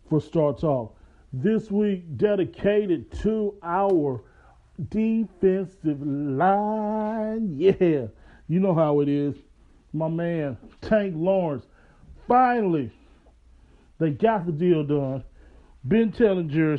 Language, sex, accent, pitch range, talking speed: English, male, American, 145-200 Hz, 105 wpm